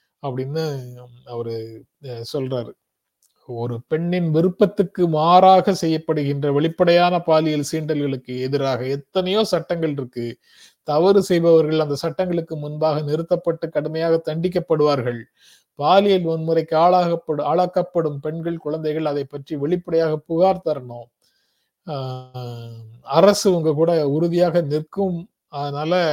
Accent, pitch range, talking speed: native, 140-170 Hz, 75 wpm